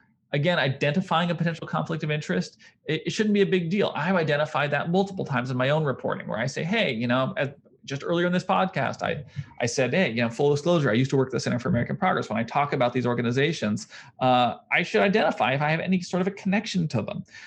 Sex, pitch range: male, 130-185 Hz